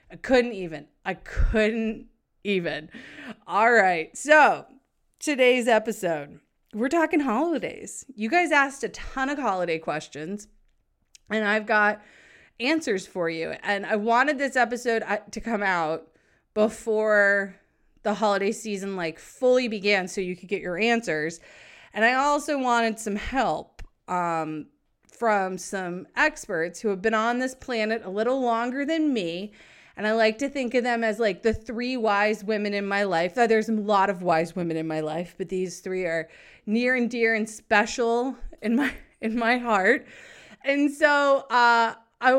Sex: female